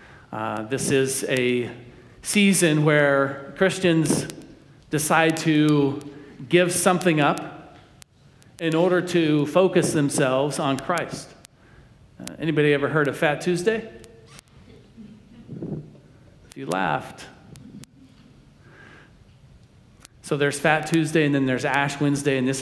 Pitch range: 135-165 Hz